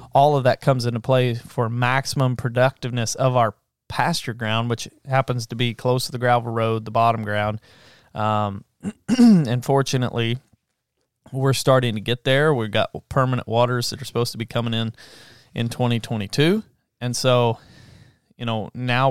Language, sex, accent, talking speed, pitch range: English, male, American, 160 wpm, 115-130 Hz